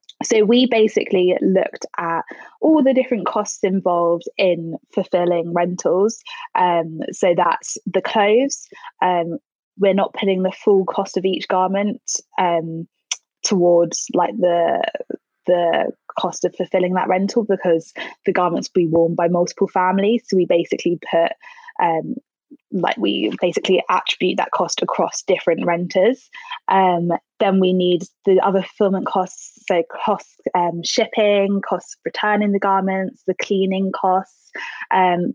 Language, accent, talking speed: English, British, 135 wpm